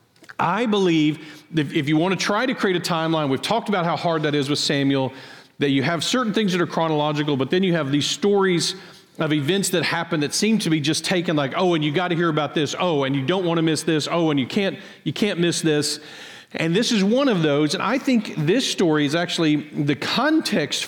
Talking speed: 240 wpm